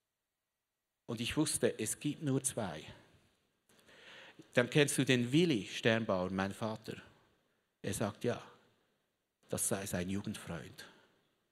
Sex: male